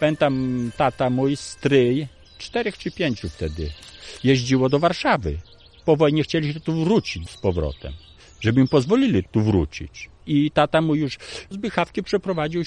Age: 50-69